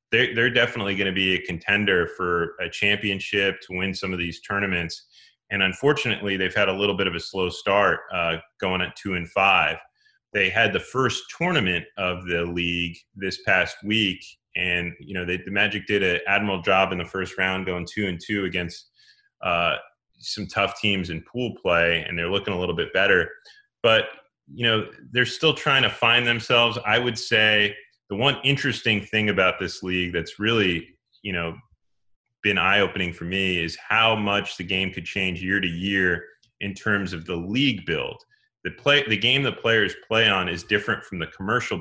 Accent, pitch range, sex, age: American, 90-115 Hz, male, 30-49